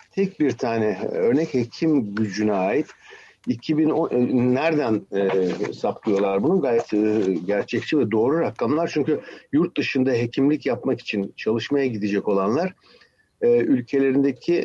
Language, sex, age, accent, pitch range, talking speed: Turkish, male, 60-79, native, 110-145 Hz, 120 wpm